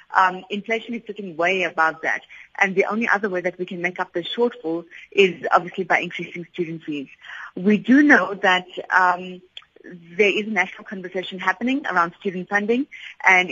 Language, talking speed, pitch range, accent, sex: English, 180 wpm, 175-215 Hz, Indian, female